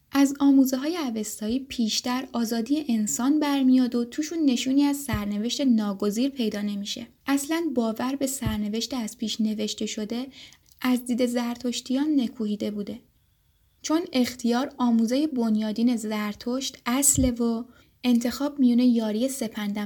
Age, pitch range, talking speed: 10-29, 210-260 Hz, 120 wpm